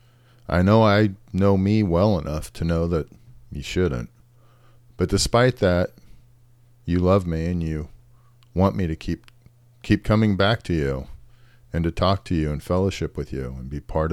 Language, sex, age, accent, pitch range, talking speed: English, male, 40-59, American, 80-120 Hz, 175 wpm